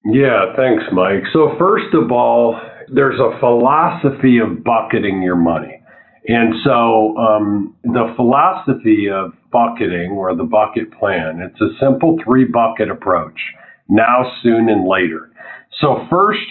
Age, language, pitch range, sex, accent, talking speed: 50-69, English, 110-145 Hz, male, American, 135 wpm